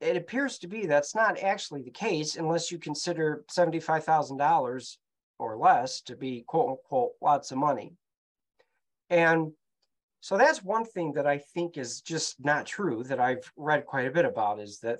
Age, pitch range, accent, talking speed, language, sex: 40-59, 120-170 Hz, American, 170 wpm, English, male